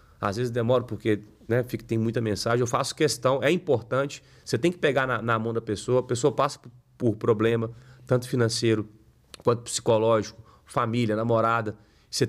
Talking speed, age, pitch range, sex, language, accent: 170 wpm, 40-59, 115-150 Hz, male, Portuguese, Brazilian